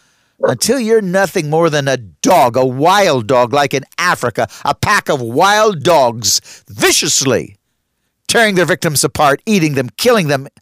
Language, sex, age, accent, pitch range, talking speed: English, male, 60-79, American, 150-215 Hz, 155 wpm